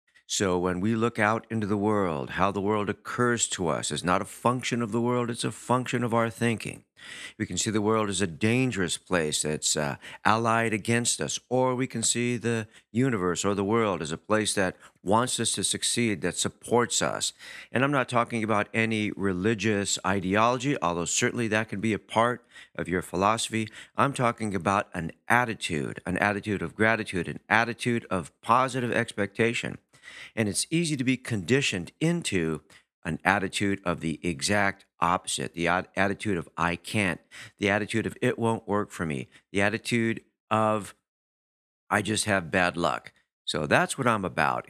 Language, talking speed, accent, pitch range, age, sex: English, 175 wpm, American, 95-120 Hz, 50-69, male